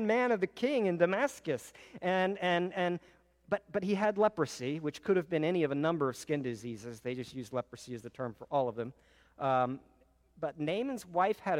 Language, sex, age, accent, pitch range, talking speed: English, male, 50-69, American, 125-170 Hz, 210 wpm